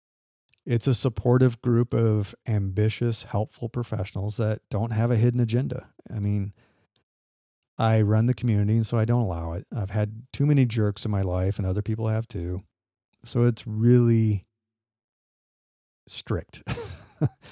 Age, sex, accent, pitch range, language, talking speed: 40-59, male, American, 95-115 Hz, English, 145 wpm